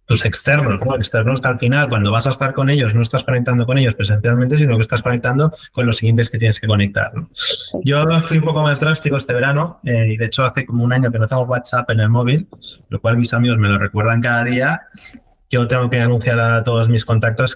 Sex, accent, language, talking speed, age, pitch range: male, Spanish, Spanish, 250 wpm, 20-39, 115-135 Hz